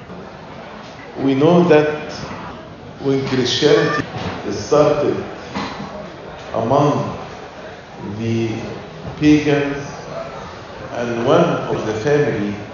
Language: English